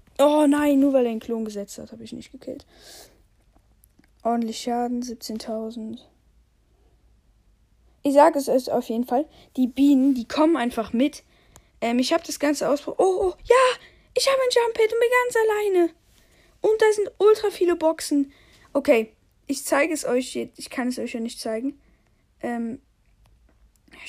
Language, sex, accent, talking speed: German, female, German, 160 wpm